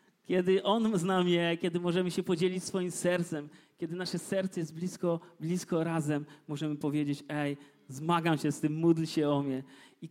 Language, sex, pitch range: Polish, male, 145-190 Hz